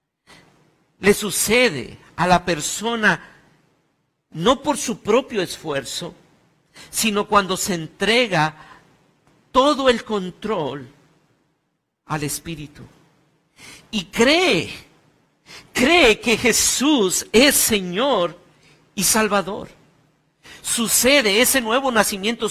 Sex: male